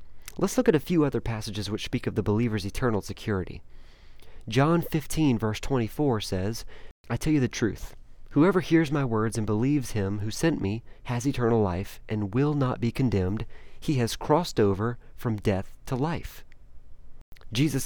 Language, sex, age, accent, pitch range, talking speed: English, male, 30-49, American, 100-135 Hz, 170 wpm